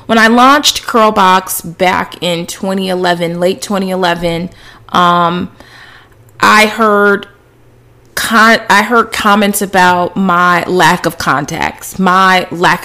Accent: American